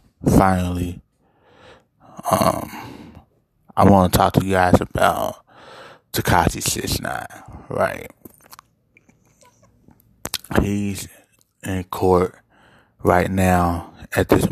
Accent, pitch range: American, 90-105 Hz